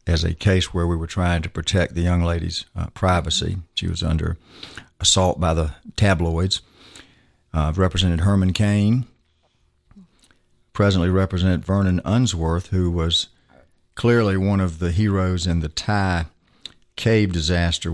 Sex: male